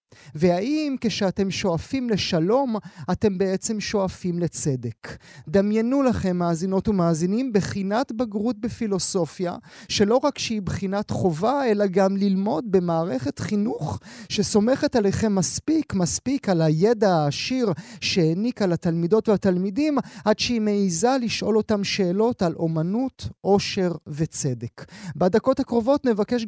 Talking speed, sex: 110 wpm, male